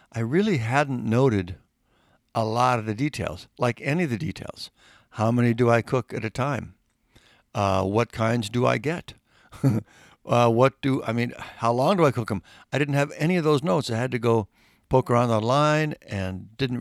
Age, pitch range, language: 60-79, 105-135 Hz, English